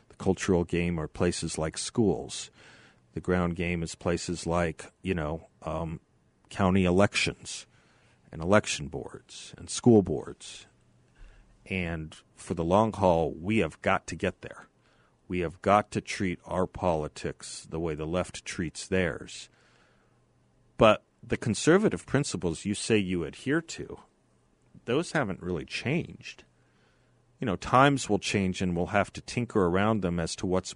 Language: English